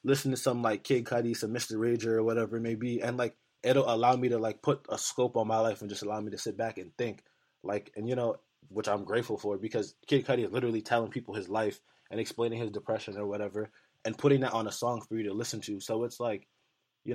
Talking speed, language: 260 wpm, English